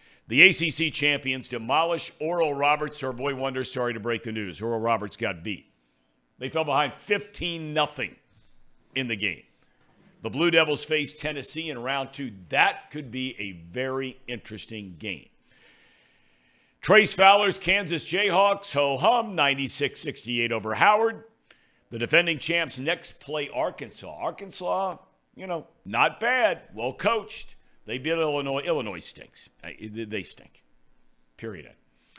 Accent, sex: American, male